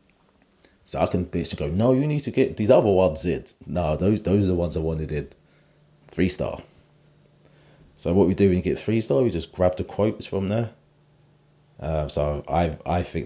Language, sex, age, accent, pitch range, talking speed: English, male, 30-49, British, 80-105 Hz, 200 wpm